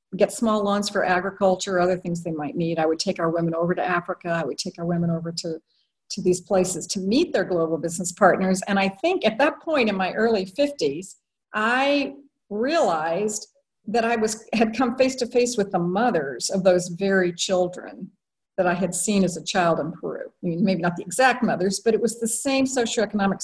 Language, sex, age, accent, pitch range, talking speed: English, female, 50-69, American, 180-225 Hz, 210 wpm